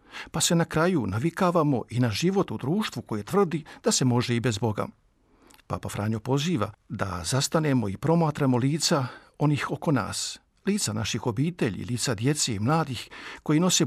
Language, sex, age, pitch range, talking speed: Croatian, male, 50-69, 120-175 Hz, 165 wpm